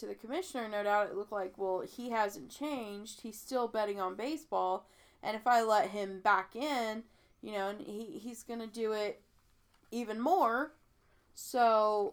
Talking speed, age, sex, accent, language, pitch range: 165 wpm, 20-39, female, American, English, 200-230 Hz